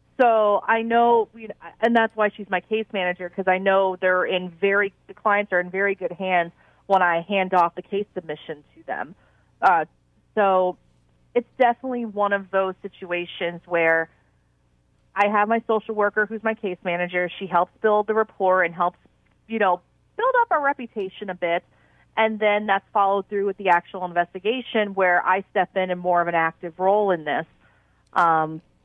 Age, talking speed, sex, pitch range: 40-59, 180 wpm, female, 180-225 Hz